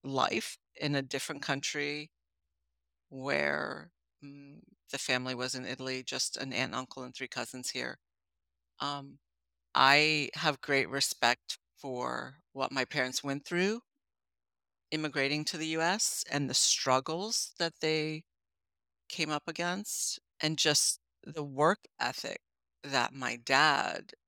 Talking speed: 125 wpm